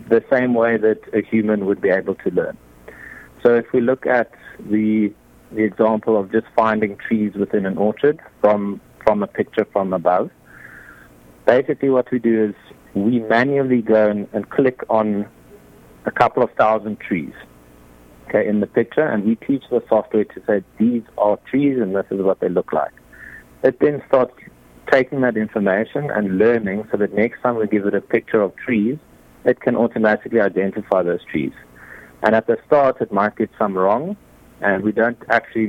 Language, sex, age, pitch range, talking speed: English, male, 60-79, 95-110 Hz, 180 wpm